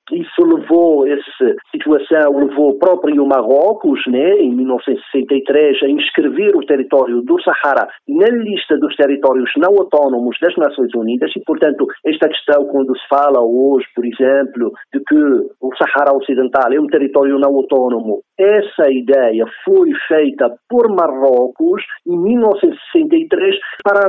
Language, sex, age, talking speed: Portuguese, male, 50-69, 135 wpm